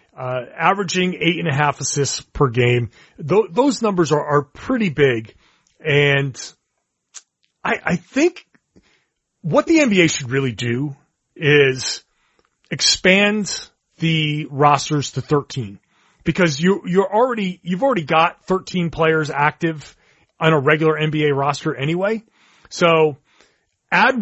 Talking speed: 125 wpm